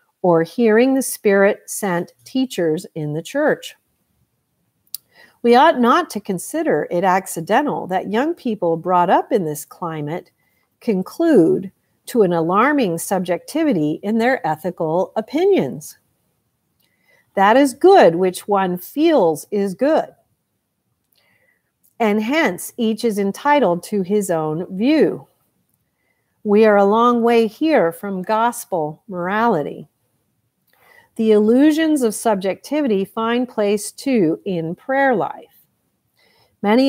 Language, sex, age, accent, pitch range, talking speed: English, female, 50-69, American, 175-245 Hz, 110 wpm